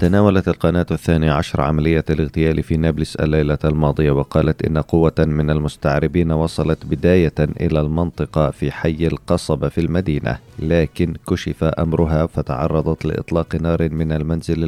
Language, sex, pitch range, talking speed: Arabic, male, 75-85 Hz, 130 wpm